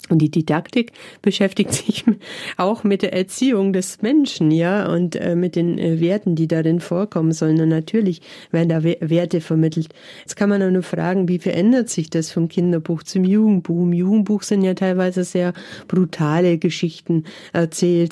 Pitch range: 165-190 Hz